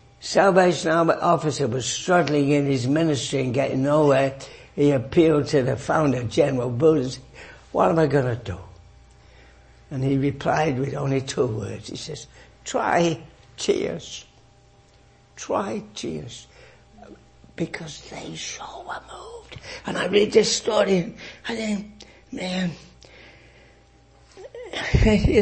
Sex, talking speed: male, 125 wpm